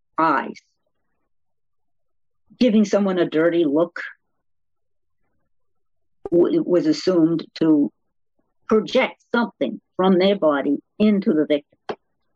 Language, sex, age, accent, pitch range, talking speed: English, female, 50-69, American, 165-255 Hz, 85 wpm